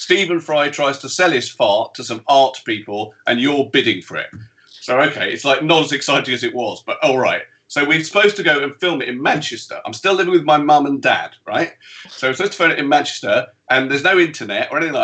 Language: English